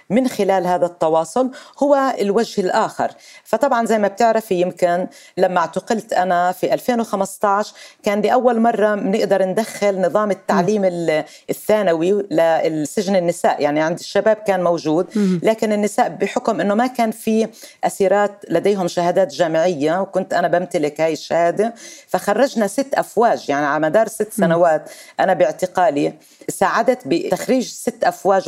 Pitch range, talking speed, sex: 175-225 Hz, 135 wpm, female